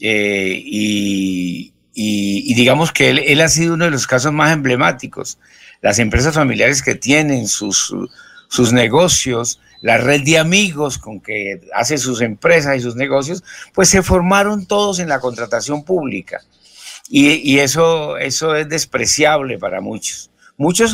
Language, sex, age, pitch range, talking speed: Spanish, male, 60-79, 125-170 Hz, 150 wpm